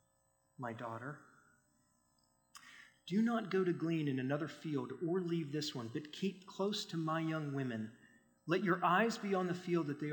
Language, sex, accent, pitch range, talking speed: English, male, American, 135-175 Hz, 180 wpm